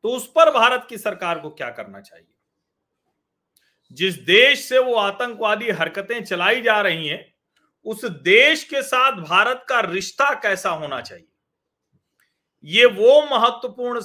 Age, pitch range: 40-59, 170-240 Hz